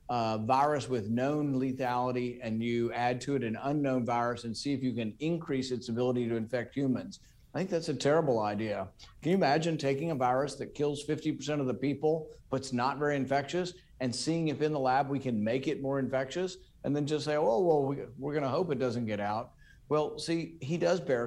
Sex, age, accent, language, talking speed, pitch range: male, 50-69, American, English, 225 wpm, 120-150 Hz